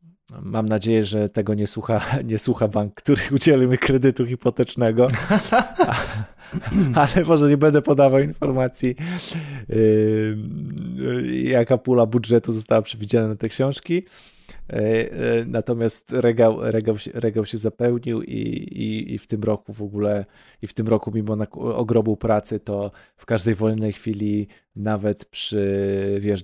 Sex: male